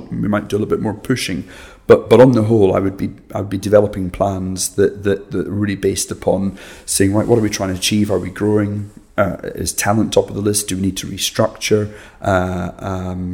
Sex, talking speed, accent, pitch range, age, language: male, 235 wpm, British, 95-105 Hz, 30-49, English